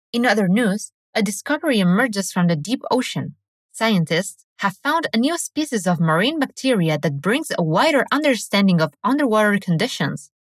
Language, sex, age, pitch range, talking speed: English, female, 20-39, 175-265 Hz, 155 wpm